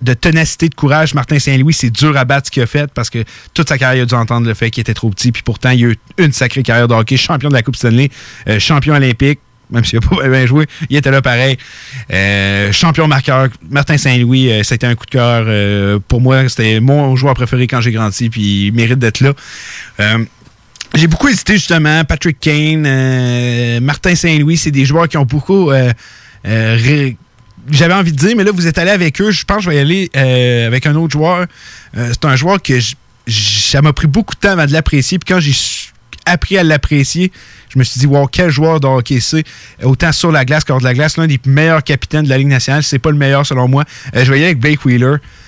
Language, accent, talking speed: French, Canadian, 240 wpm